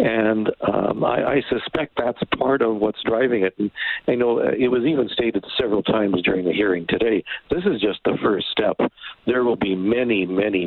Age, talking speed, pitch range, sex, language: 60-79, 195 wpm, 95-115 Hz, male, English